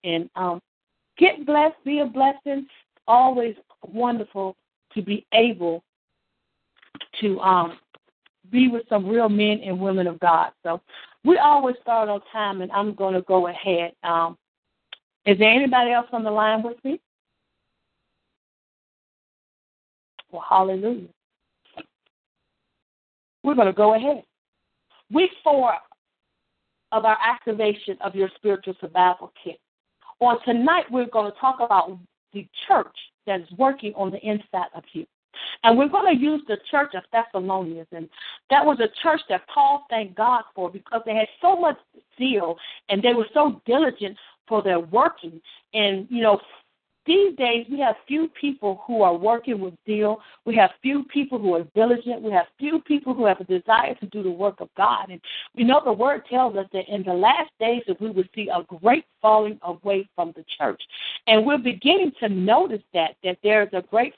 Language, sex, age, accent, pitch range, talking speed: English, female, 50-69, American, 190-255 Hz, 170 wpm